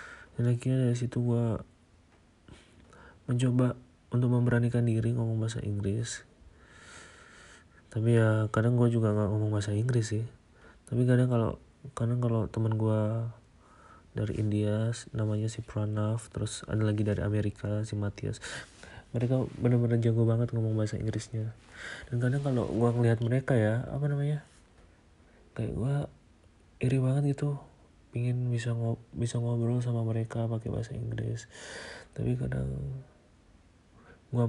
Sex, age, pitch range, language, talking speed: male, 30-49, 105-120 Hz, Indonesian, 125 wpm